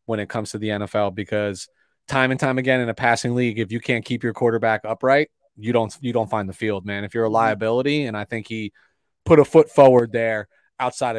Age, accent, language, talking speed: 30-49, American, English, 235 wpm